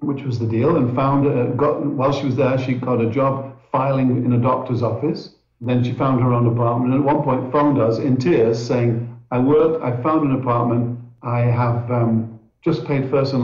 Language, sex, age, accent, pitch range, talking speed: English, male, 50-69, British, 120-150 Hz, 220 wpm